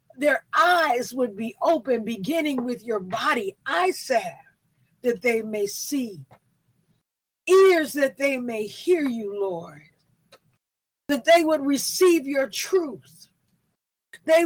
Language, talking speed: English, 120 wpm